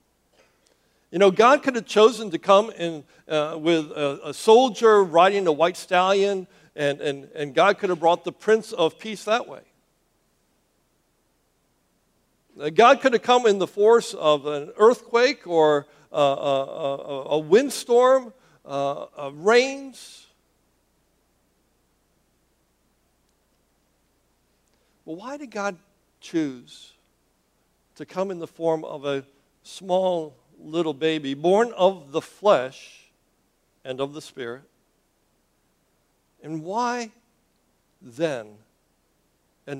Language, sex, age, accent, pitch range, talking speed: English, male, 60-79, American, 145-195 Hz, 115 wpm